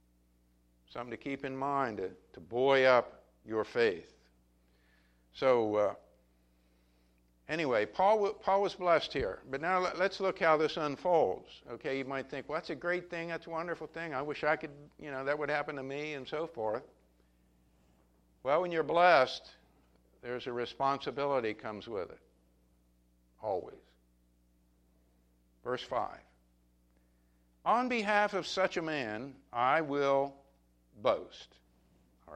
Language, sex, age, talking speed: English, male, 60-79, 140 wpm